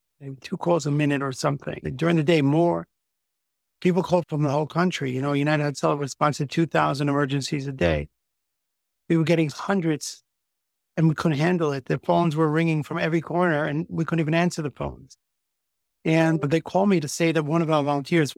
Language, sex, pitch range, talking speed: English, male, 145-170 Hz, 200 wpm